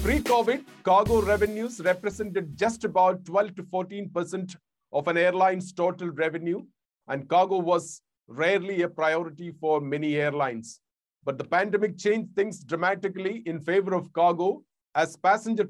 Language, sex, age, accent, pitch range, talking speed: English, male, 50-69, Indian, 160-190 Hz, 135 wpm